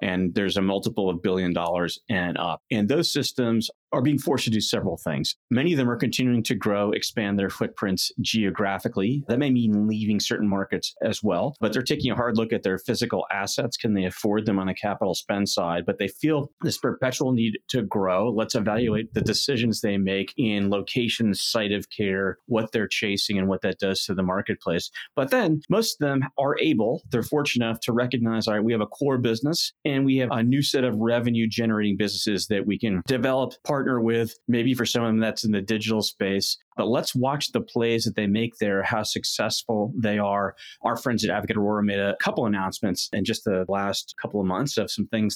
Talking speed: 215 wpm